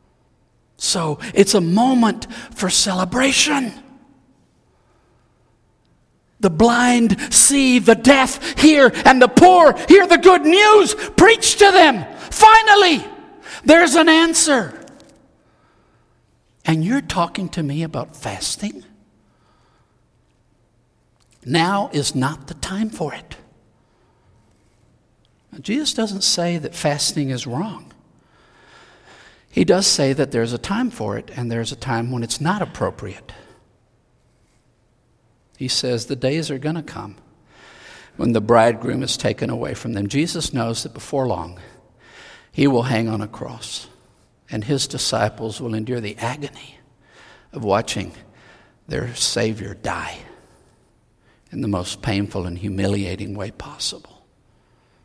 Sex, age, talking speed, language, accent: male, 60-79, 120 wpm, English, American